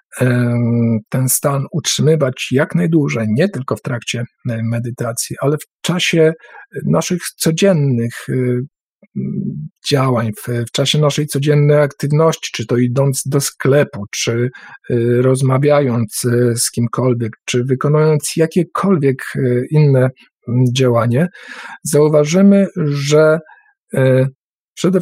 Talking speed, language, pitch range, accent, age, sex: 90 wpm, Polish, 120-150 Hz, native, 50-69, male